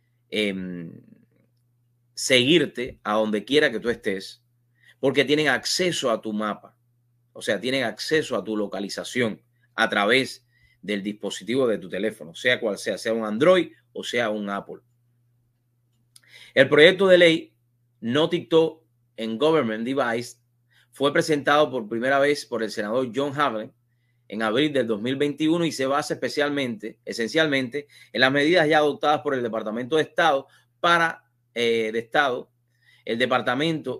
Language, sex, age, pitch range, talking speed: English, male, 30-49, 115-145 Hz, 145 wpm